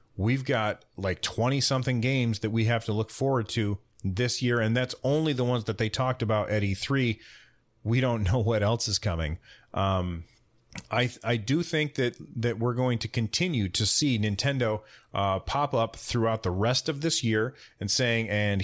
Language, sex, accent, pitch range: English, male, American, 105-125 Hz